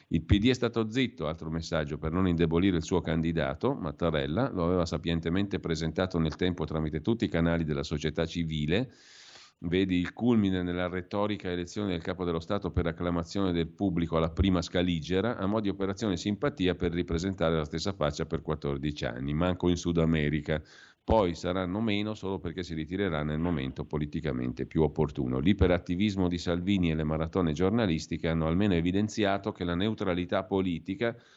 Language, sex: Italian, male